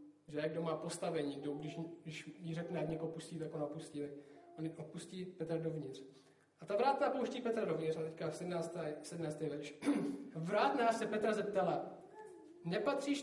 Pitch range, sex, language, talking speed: 165-225 Hz, male, Czech, 145 wpm